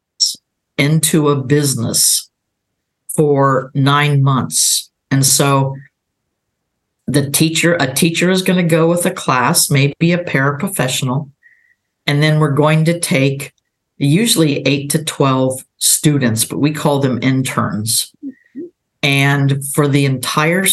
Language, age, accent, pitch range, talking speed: English, 50-69, American, 135-160 Hz, 120 wpm